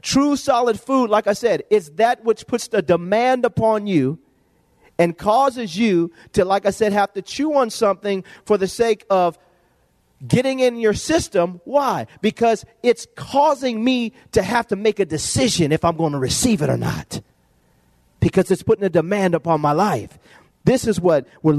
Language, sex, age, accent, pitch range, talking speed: English, male, 40-59, American, 130-220 Hz, 180 wpm